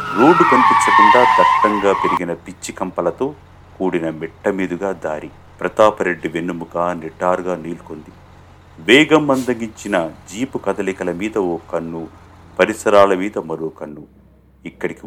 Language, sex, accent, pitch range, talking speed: Telugu, male, native, 85-115 Hz, 95 wpm